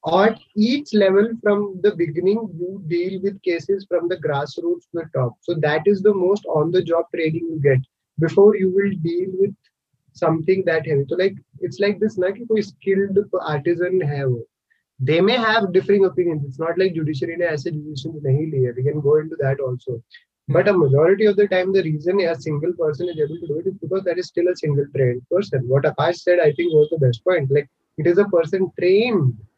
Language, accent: Hindi, native